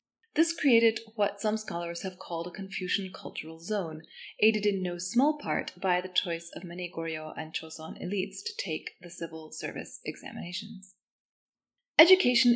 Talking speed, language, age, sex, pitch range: 155 wpm, English, 20-39, female, 175-240 Hz